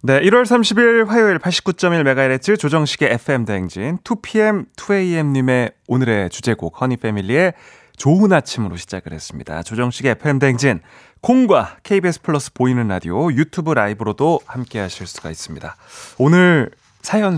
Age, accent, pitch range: 30-49, native, 115-180 Hz